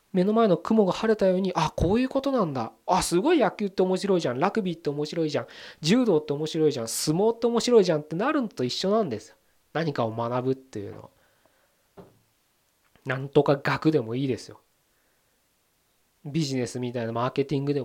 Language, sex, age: Japanese, male, 20-39